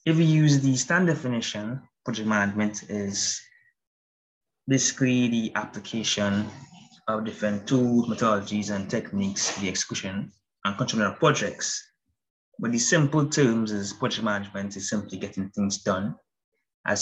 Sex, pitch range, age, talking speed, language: male, 105-135 Hz, 20-39, 130 wpm, English